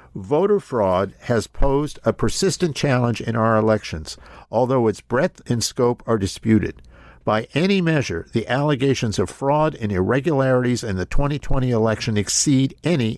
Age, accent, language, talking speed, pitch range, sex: 50-69, American, English, 145 wpm, 105-140 Hz, male